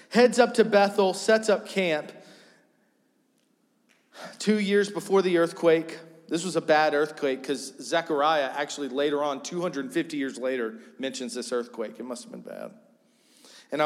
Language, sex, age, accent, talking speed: English, male, 40-59, American, 145 wpm